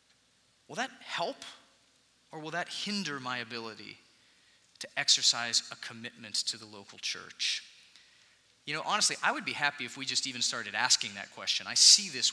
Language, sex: English, male